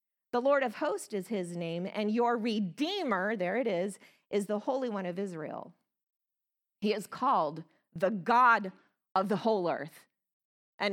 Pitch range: 205-270 Hz